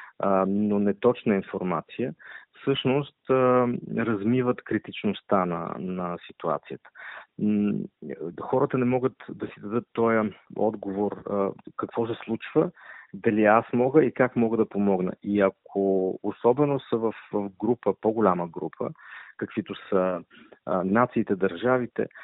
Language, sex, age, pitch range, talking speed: Bulgarian, male, 40-59, 100-120 Hz, 110 wpm